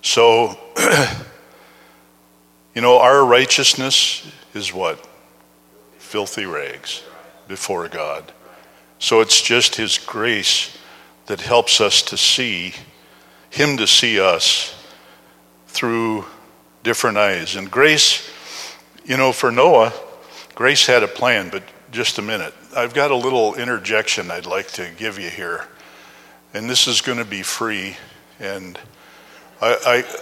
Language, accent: English, American